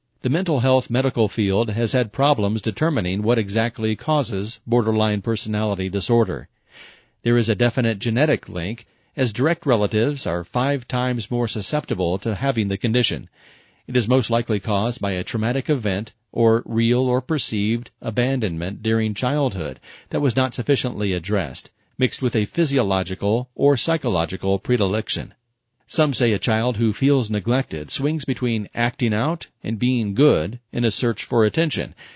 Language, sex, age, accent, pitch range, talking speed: English, male, 40-59, American, 105-125 Hz, 150 wpm